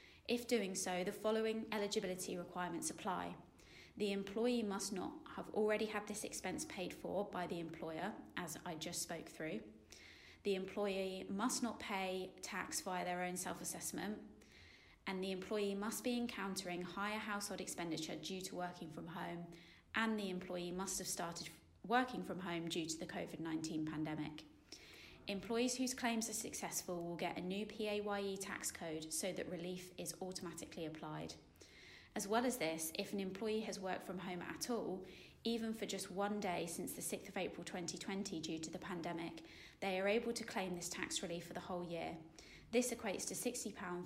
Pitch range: 170-205 Hz